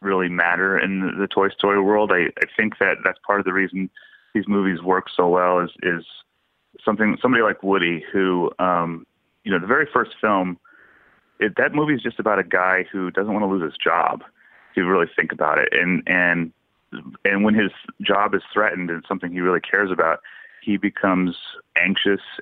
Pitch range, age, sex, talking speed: 85-100 Hz, 30-49, male, 195 wpm